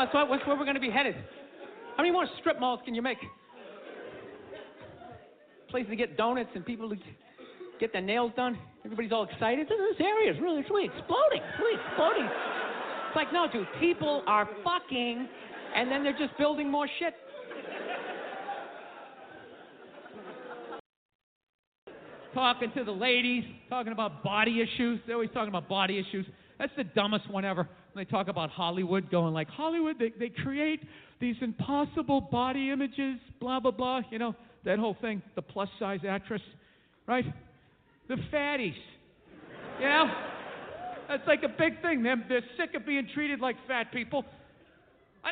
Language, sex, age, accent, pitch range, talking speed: English, male, 50-69, American, 220-290 Hz, 155 wpm